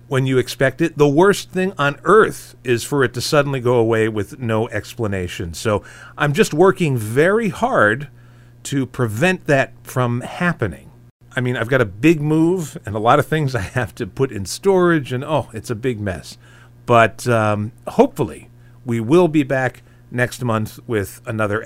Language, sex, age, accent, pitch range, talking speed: English, male, 40-59, American, 115-155 Hz, 180 wpm